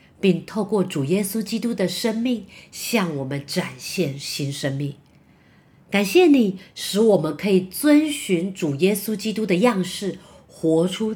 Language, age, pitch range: Chinese, 50-69, 145-215 Hz